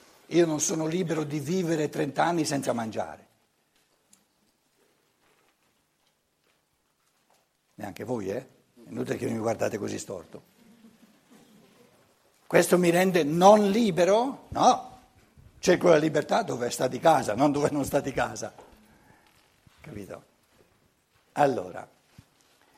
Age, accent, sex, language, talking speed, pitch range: 60-79, native, male, Italian, 105 wpm, 160-220 Hz